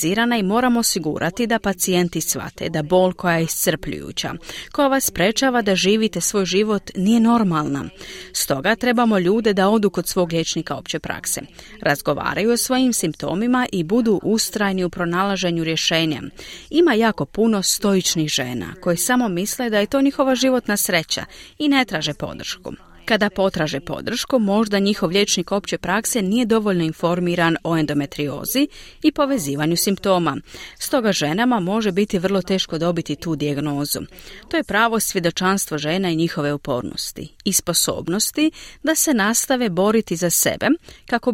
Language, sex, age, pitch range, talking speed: Croatian, female, 30-49, 170-235 Hz, 145 wpm